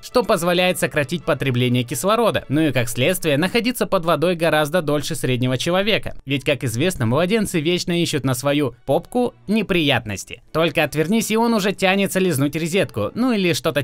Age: 20-39